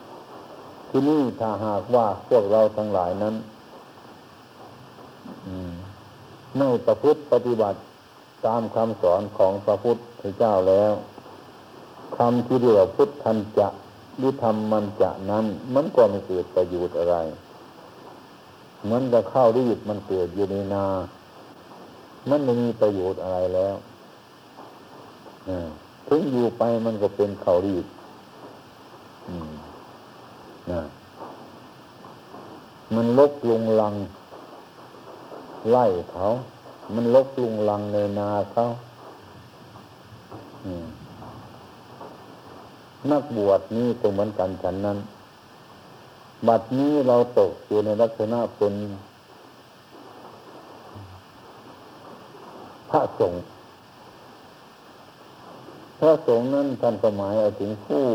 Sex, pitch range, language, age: male, 100-120 Hz, Thai, 60-79